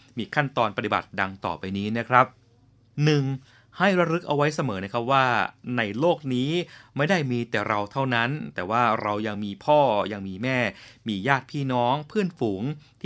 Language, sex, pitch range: Thai, male, 105-135 Hz